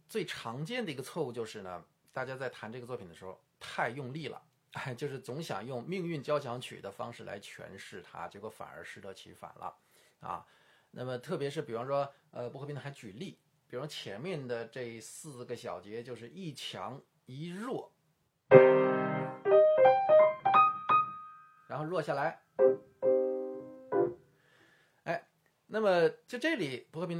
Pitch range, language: 125-175 Hz, Chinese